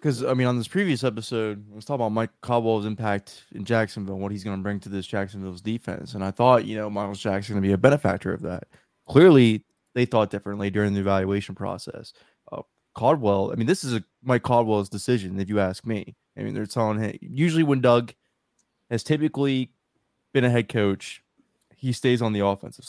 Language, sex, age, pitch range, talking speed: English, male, 20-39, 100-125 Hz, 210 wpm